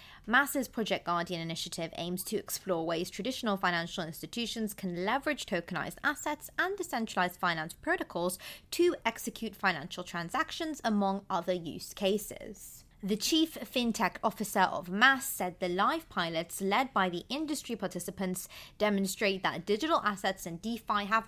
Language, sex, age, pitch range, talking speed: English, female, 20-39, 180-245 Hz, 140 wpm